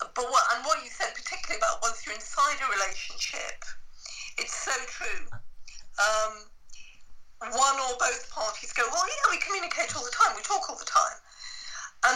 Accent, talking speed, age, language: British, 175 wpm, 50-69, English